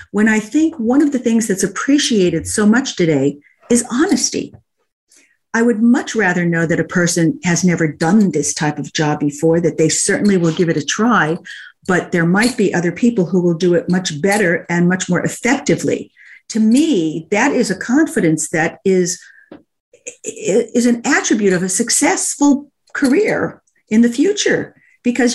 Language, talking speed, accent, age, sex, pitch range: English, 175 wpm, American, 50-69, female, 165-240 Hz